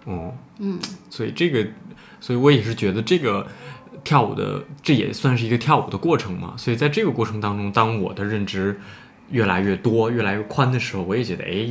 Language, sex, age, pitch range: Chinese, male, 20-39, 95-125 Hz